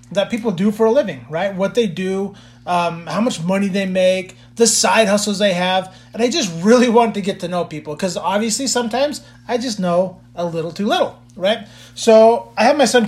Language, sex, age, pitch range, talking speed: English, male, 30-49, 165-200 Hz, 215 wpm